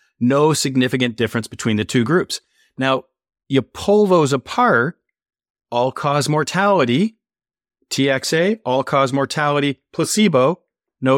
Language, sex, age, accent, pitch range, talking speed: English, male, 40-59, American, 130-180 Hz, 100 wpm